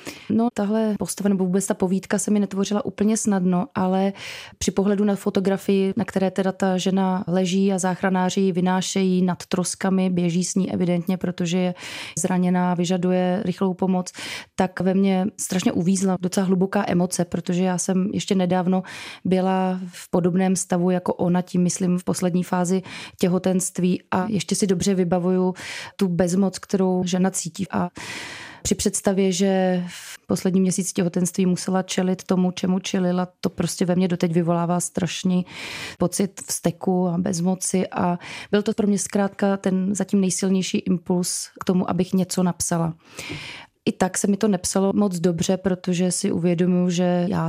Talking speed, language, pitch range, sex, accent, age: 160 wpm, Czech, 180-195 Hz, female, native, 20-39